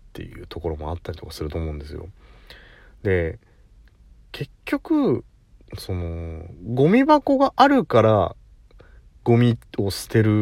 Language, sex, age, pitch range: Japanese, male, 30-49, 95-150 Hz